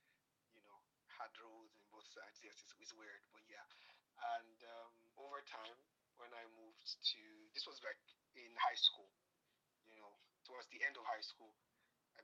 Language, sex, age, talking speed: English, male, 30-49, 155 wpm